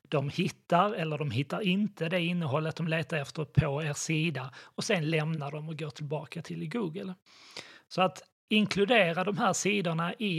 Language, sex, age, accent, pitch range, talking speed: Swedish, male, 30-49, native, 150-175 Hz, 175 wpm